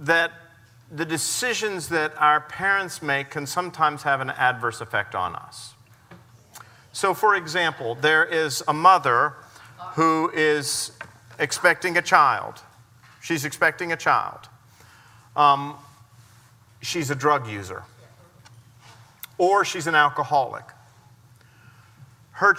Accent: American